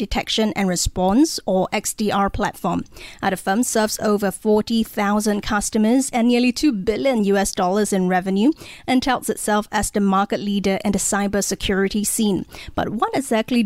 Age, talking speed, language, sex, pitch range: 20-39, 150 wpm, English, female, 200-235 Hz